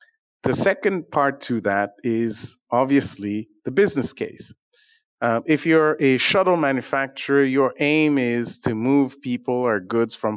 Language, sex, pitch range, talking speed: English, male, 115-155 Hz, 145 wpm